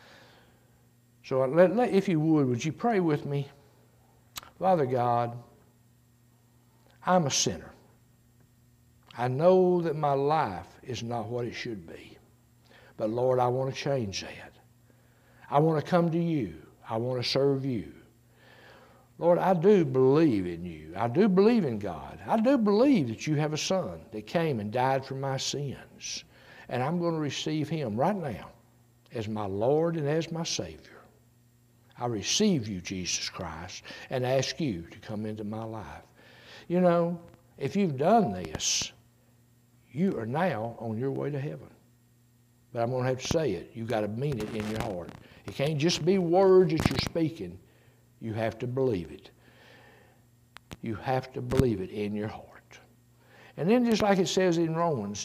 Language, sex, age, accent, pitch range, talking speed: English, male, 60-79, American, 120-160 Hz, 170 wpm